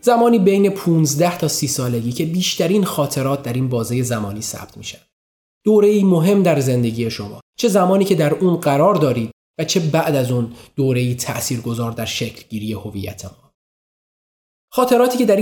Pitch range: 120-170 Hz